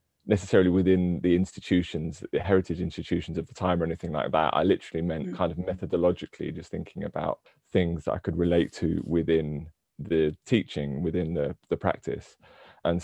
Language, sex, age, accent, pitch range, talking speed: English, male, 20-39, British, 85-100 Hz, 170 wpm